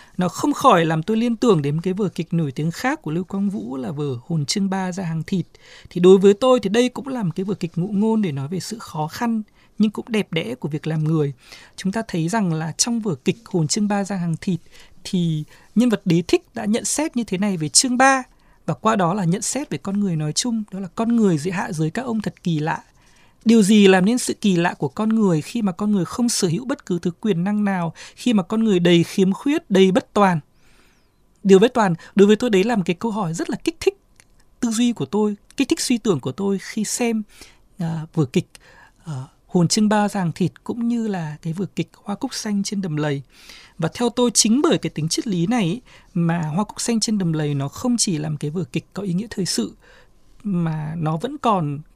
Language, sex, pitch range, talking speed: Vietnamese, male, 165-225 Hz, 255 wpm